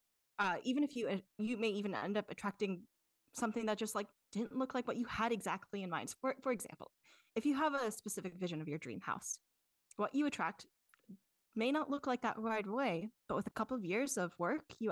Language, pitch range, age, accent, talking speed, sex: English, 185-240 Hz, 10-29, American, 220 wpm, female